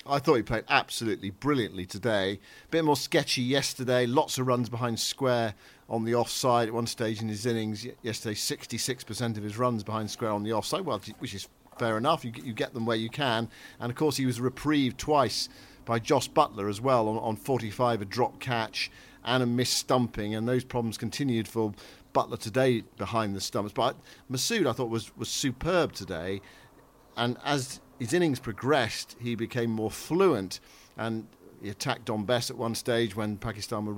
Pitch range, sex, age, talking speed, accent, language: 110-130 Hz, male, 50-69, 190 wpm, British, English